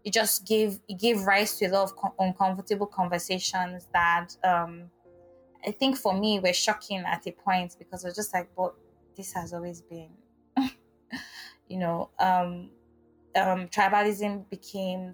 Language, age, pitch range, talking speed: English, 20-39, 180-210 Hz, 155 wpm